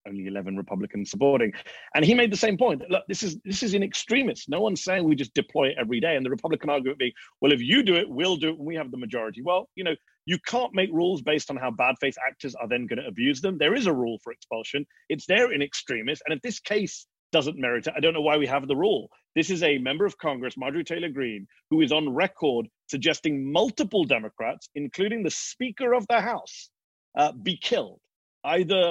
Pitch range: 130-180 Hz